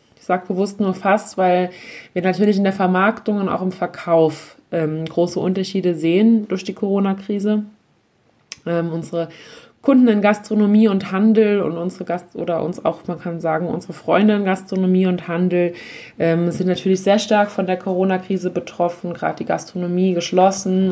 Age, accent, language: 20-39, German, German